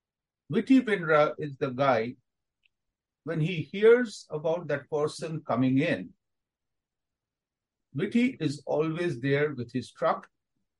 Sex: male